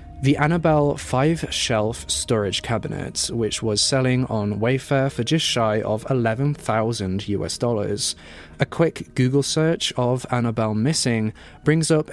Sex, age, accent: male, 20-39, British